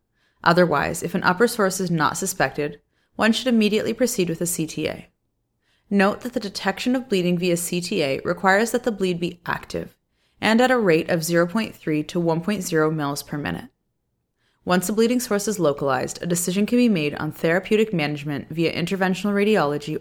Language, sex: English, female